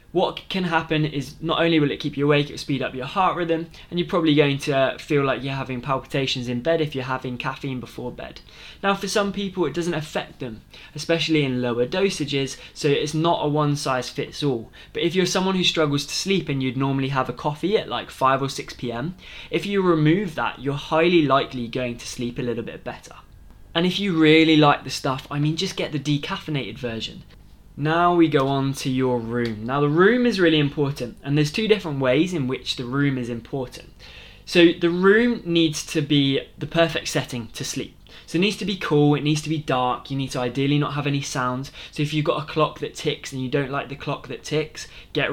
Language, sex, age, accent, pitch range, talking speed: English, male, 20-39, British, 130-160 Hz, 230 wpm